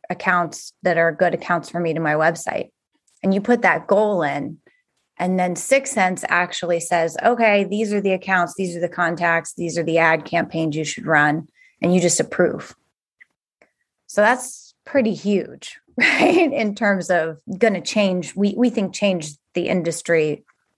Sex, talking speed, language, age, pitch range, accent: female, 170 wpm, English, 30-49, 180-275 Hz, American